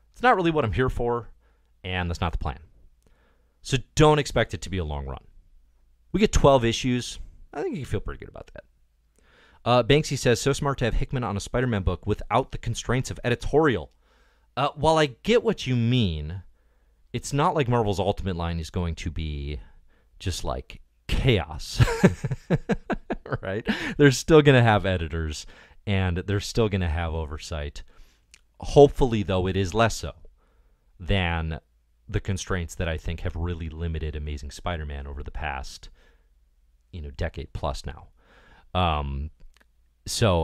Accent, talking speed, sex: American, 165 wpm, male